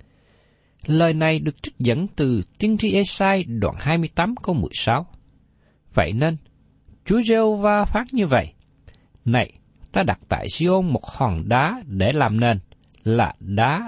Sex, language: male, Vietnamese